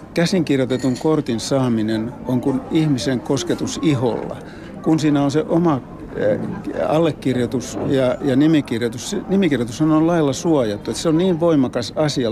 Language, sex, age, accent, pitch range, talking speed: Finnish, male, 60-79, native, 120-145 Hz, 125 wpm